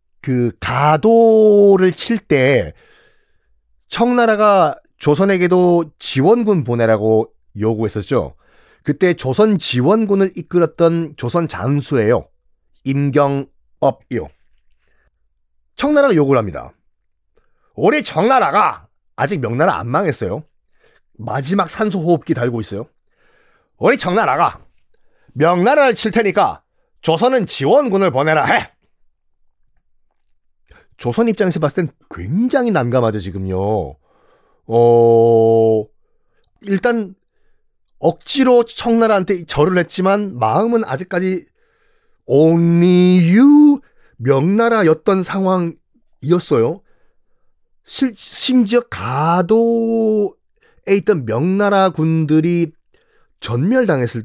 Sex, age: male, 40-59